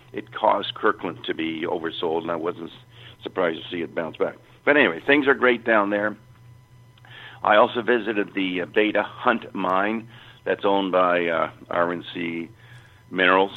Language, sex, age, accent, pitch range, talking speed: English, male, 60-79, American, 95-120 Hz, 155 wpm